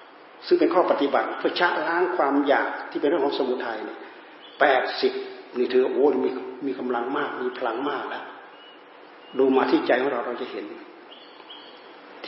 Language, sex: Thai, male